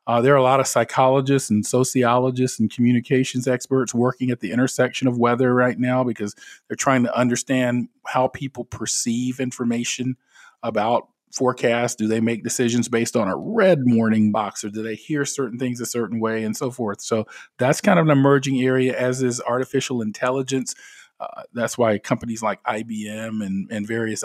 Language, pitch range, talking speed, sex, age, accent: English, 110-130 Hz, 180 wpm, male, 40-59, American